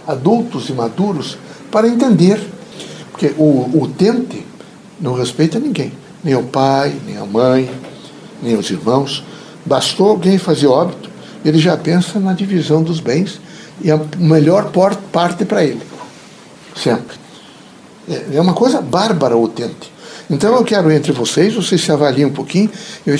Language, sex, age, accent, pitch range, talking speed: Portuguese, male, 60-79, Brazilian, 155-200 Hz, 150 wpm